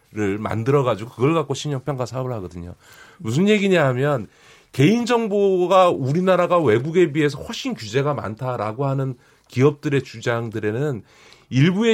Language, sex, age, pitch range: Korean, male, 40-59, 130-190 Hz